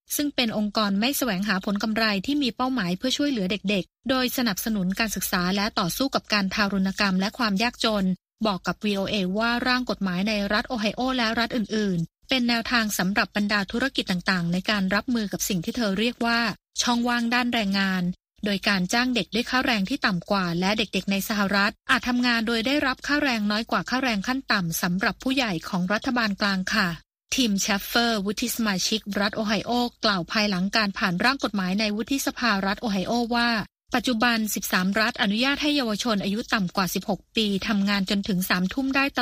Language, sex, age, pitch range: Thai, female, 20-39, 200-245 Hz